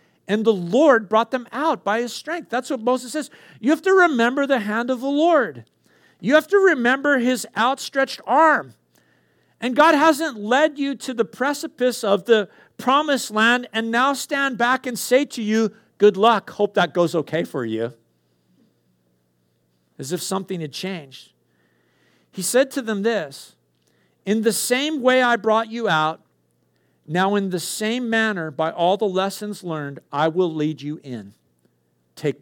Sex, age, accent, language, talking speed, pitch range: male, 50-69, American, English, 170 wpm, 150-235 Hz